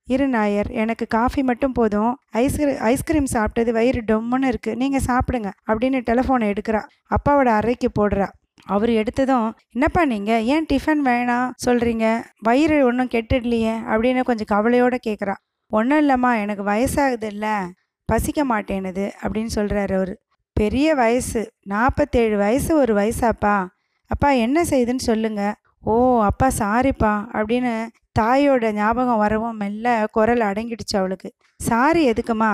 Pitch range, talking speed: 215-255 Hz, 125 wpm